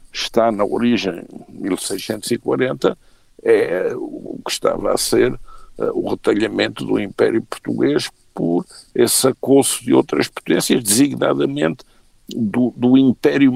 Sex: male